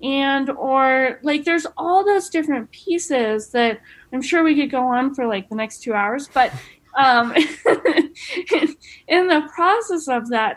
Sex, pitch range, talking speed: female, 245-320 Hz, 160 wpm